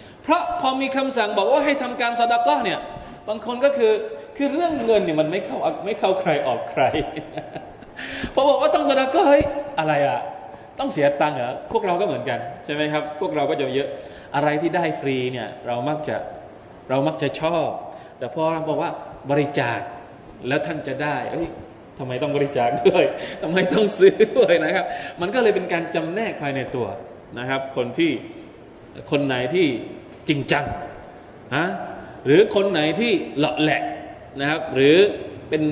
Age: 20-39